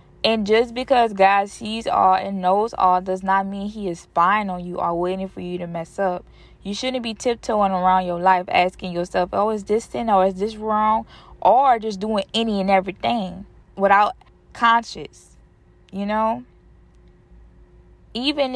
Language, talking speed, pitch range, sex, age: English, 170 wpm, 180-225 Hz, female, 20-39